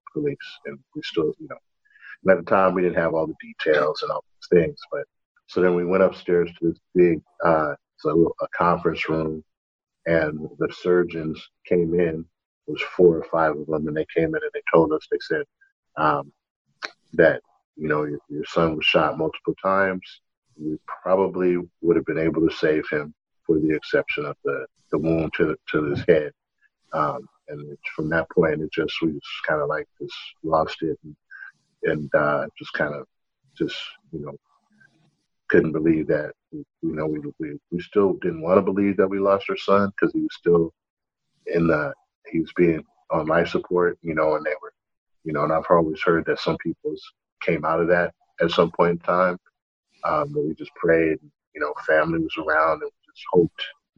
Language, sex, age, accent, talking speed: English, male, 50-69, American, 200 wpm